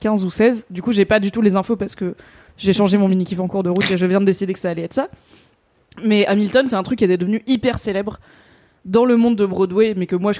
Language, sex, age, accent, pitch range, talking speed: French, female, 20-39, French, 185-225 Hz, 290 wpm